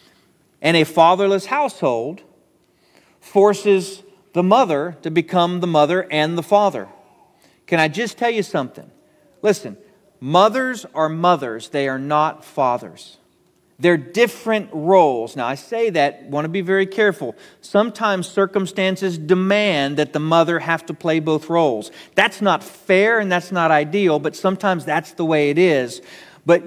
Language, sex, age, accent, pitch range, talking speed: English, male, 40-59, American, 155-200 Hz, 150 wpm